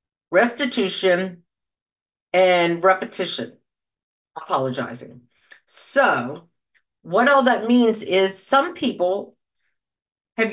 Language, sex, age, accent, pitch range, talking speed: English, female, 50-69, American, 190-255 Hz, 75 wpm